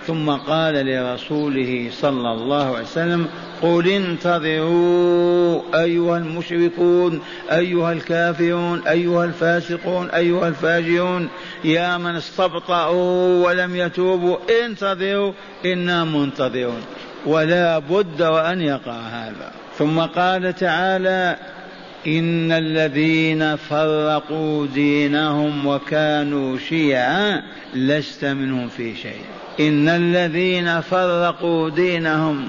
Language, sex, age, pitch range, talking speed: Arabic, male, 50-69, 150-180 Hz, 85 wpm